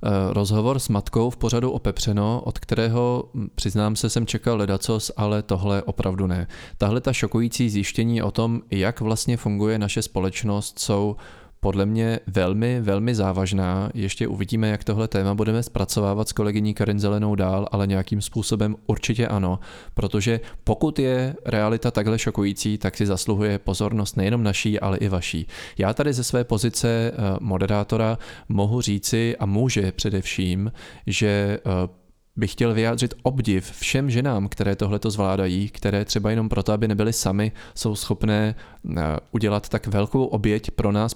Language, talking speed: Czech, 150 wpm